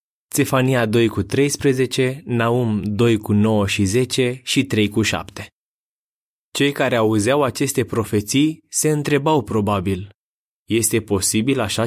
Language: Romanian